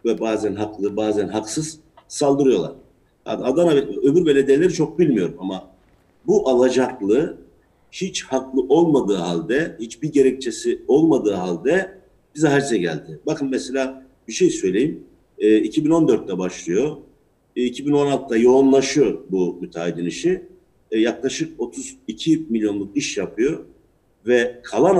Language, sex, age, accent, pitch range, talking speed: Turkish, male, 50-69, native, 110-155 Hz, 115 wpm